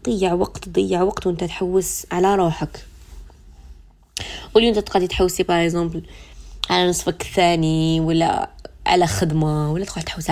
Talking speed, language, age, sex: 130 wpm, Arabic, 20-39, female